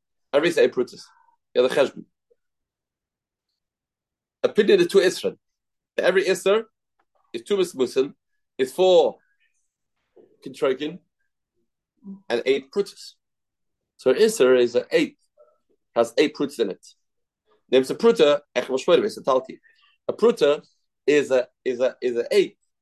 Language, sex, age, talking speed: English, male, 30-49, 120 wpm